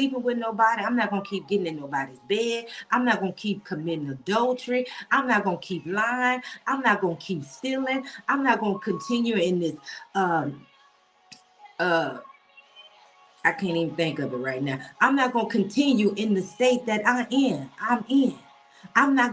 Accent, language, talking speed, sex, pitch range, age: American, English, 175 wpm, female, 205-275 Hz, 40-59